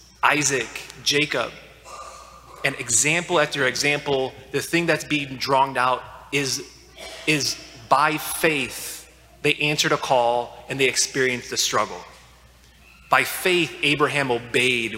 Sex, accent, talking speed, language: male, American, 115 wpm, English